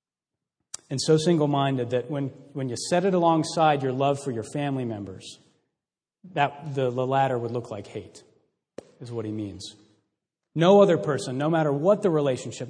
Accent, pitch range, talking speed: American, 130-170 Hz, 170 wpm